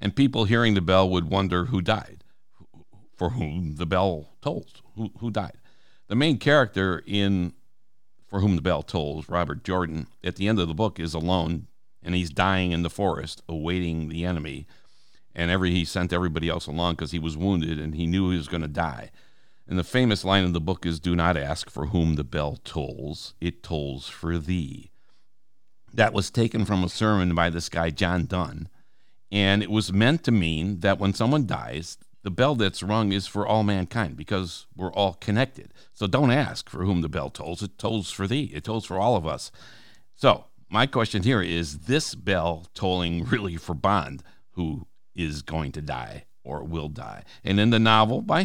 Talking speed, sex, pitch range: 200 wpm, male, 85-105 Hz